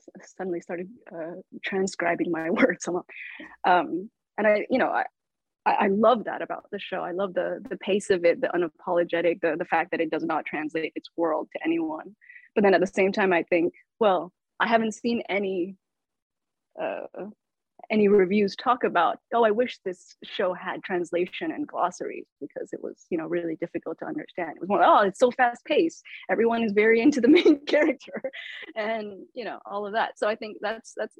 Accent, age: American, 20-39